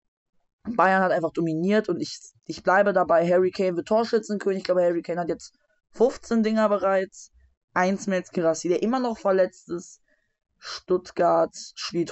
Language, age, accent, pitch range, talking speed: German, 20-39, German, 175-215 Hz, 165 wpm